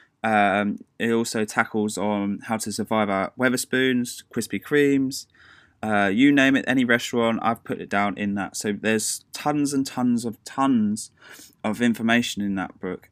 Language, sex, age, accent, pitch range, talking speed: English, male, 10-29, British, 110-140 Hz, 170 wpm